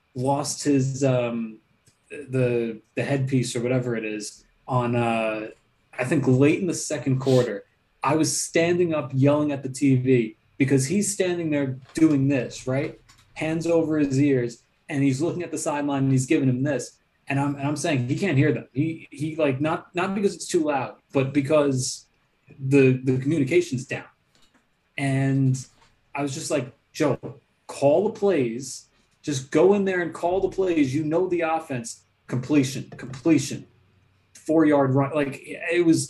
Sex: male